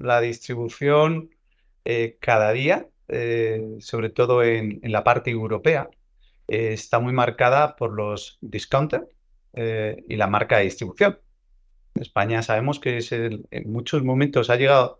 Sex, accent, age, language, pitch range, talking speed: male, Spanish, 40-59, Spanish, 110-140 Hz, 150 wpm